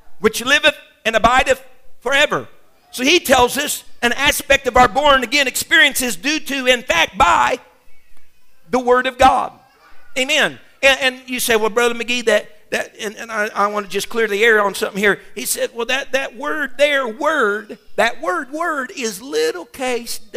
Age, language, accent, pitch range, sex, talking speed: 50-69, English, American, 200-265 Hz, male, 185 wpm